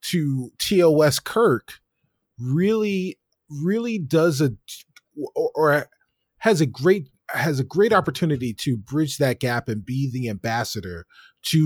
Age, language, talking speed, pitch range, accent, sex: 30-49, English, 130 wpm, 125-165 Hz, American, male